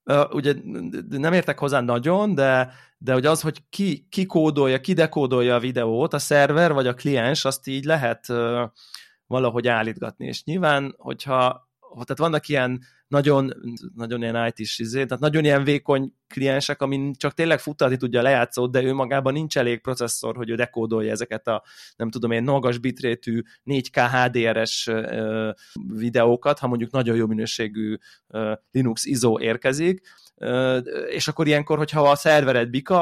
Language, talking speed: Hungarian, 150 wpm